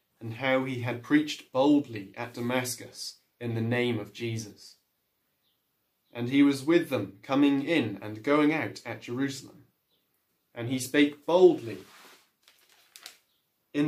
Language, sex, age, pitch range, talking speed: English, male, 20-39, 120-145 Hz, 130 wpm